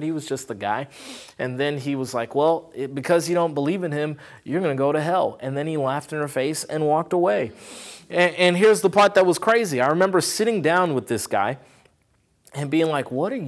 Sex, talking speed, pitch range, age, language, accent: male, 235 wpm, 140-220 Hz, 30-49, English, American